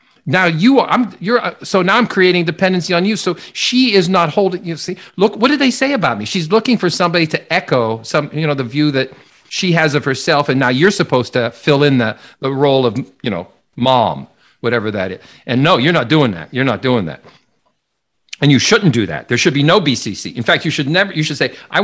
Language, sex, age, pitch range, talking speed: English, male, 50-69, 140-195 Hz, 240 wpm